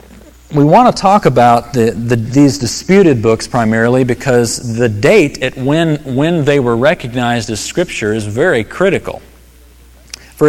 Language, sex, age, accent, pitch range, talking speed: English, male, 40-59, American, 110-150 Hz, 135 wpm